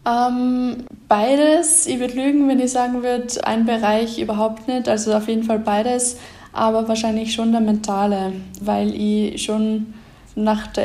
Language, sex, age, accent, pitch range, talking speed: German, female, 10-29, German, 210-235 Hz, 155 wpm